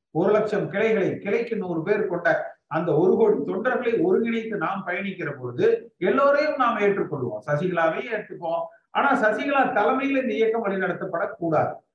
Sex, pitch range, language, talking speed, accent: male, 185-240 Hz, Tamil, 130 wpm, native